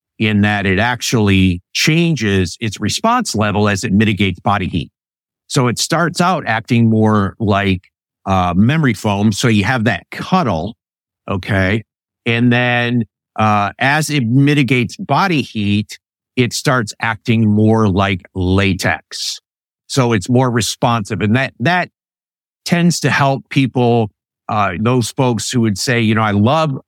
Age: 50-69